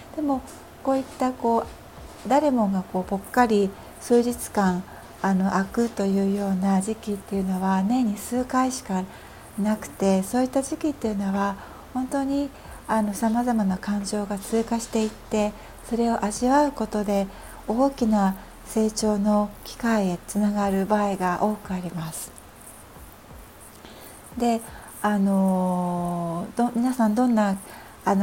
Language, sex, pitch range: Japanese, female, 195-235 Hz